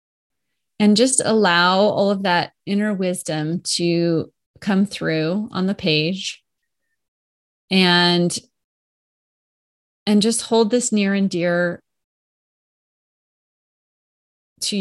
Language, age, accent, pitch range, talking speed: English, 30-49, American, 175-210 Hz, 95 wpm